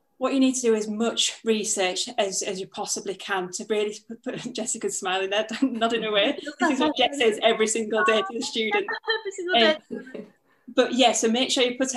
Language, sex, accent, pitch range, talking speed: English, female, British, 200-230 Hz, 220 wpm